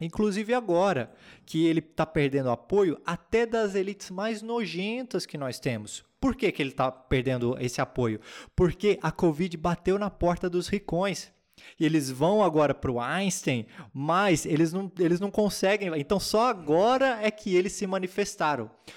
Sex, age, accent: male, 20-39, Brazilian